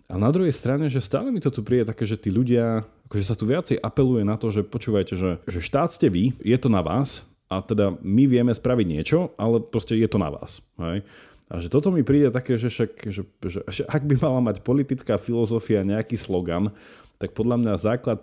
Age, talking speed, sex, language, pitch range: 30-49, 225 wpm, male, Slovak, 100-125 Hz